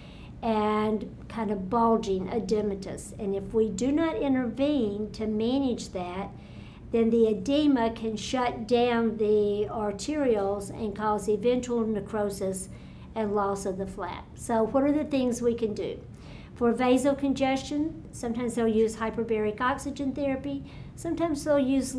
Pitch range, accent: 225-270 Hz, American